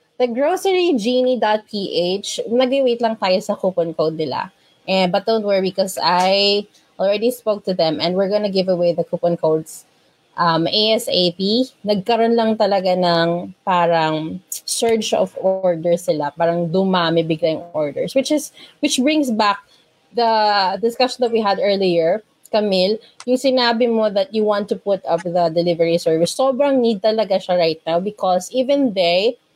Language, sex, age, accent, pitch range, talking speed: English, female, 20-39, Filipino, 175-235 Hz, 155 wpm